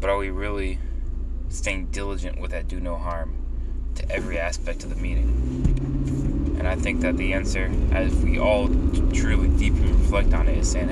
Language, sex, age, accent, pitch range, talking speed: English, male, 20-39, American, 65-90 Hz, 180 wpm